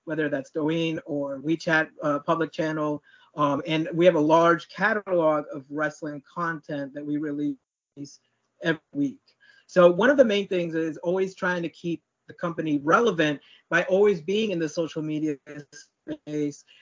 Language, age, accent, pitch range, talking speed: English, 30-49, American, 155-185 Hz, 160 wpm